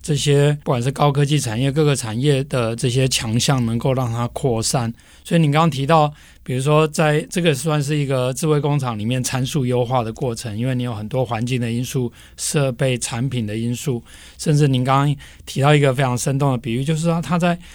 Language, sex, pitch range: Chinese, male, 120-150 Hz